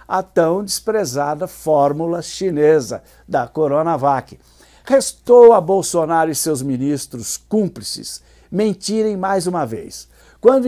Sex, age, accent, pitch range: male, 60-79, Brazilian, 155-195 Hz